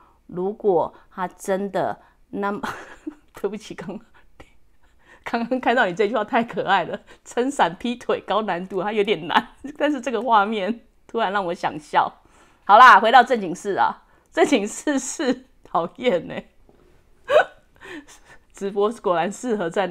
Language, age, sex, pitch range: English, 30-49, female, 170-245 Hz